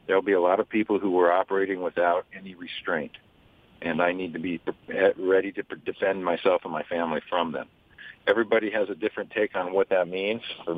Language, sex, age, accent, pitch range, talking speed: English, male, 50-69, American, 95-115 Hz, 205 wpm